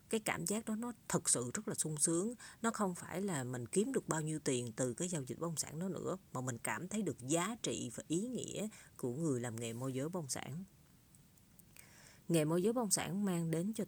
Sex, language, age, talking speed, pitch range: female, Vietnamese, 20-39, 240 wpm, 130-180 Hz